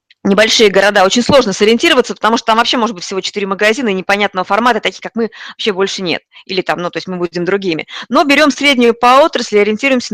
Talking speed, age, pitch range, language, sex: 215 wpm, 20-39, 185-230 Hz, Russian, female